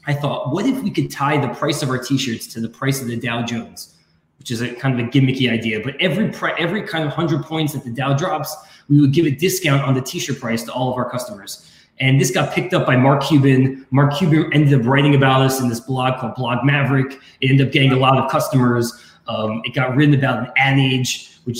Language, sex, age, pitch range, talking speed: English, male, 20-39, 125-150 Hz, 255 wpm